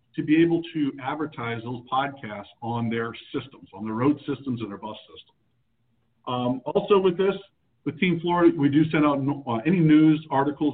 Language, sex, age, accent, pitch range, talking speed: English, male, 50-69, American, 120-150 Hz, 190 wpm